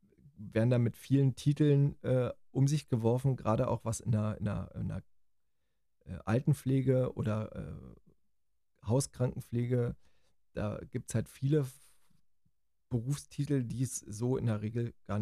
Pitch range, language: 105-130 Hz, German